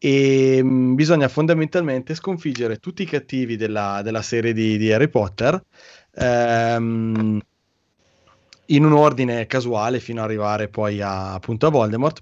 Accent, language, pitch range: native, Italian, 115-145 Hz